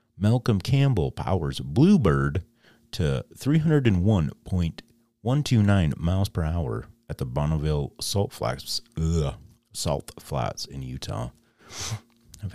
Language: English